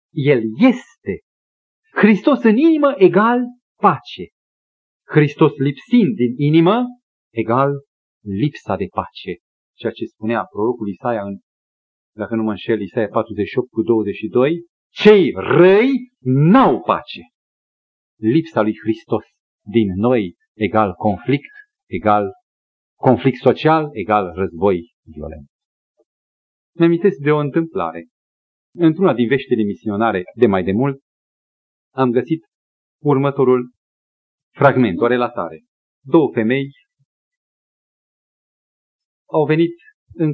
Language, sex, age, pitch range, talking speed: Romanian, male, 40-59, 110-180 Hz, 105 wpm